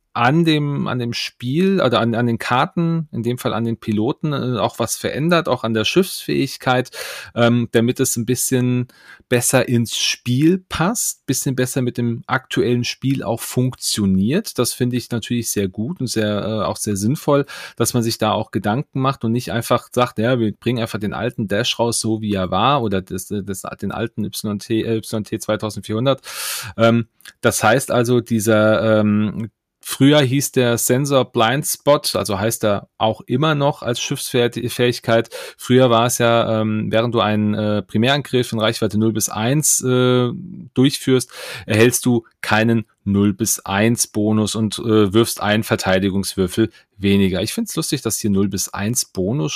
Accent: German